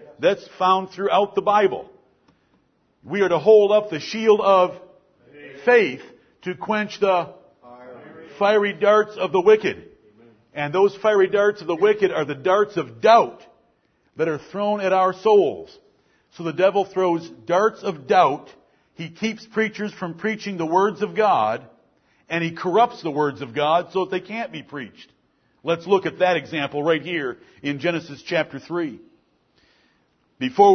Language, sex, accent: English, male, American